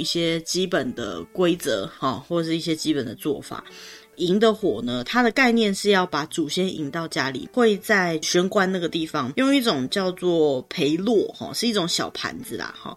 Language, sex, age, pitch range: Chinese, female, 20-39, 150-200 Hz